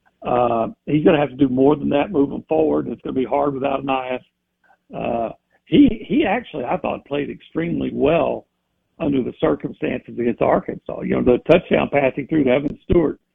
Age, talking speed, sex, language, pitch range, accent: 60-79, 195 wpm, male, English, 135-195 Hz, American